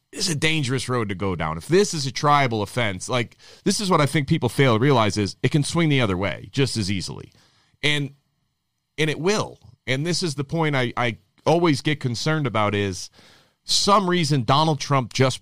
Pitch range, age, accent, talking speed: 115-150 Hz, 30-49, American, 215 wpm